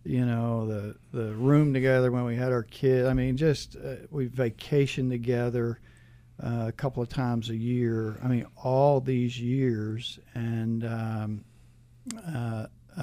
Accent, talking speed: American, 150 wpm